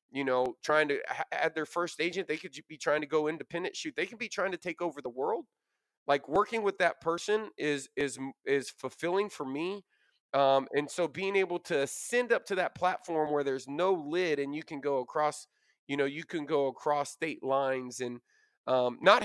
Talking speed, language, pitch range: 210 wpm, English, 125-155 Hz